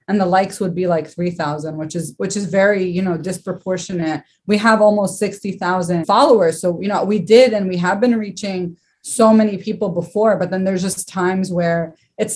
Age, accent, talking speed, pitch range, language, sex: 20-39, American, 200 wpm, 175-215 Hz, English, female